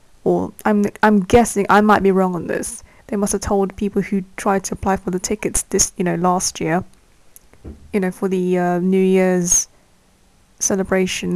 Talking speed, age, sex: 185 wpm, 20-39, female